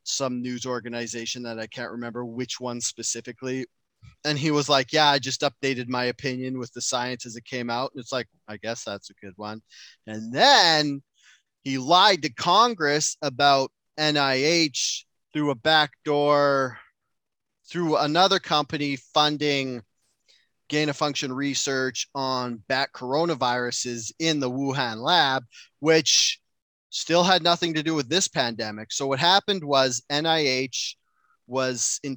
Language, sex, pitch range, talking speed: English, male, 120-145 Hz, 145 wpm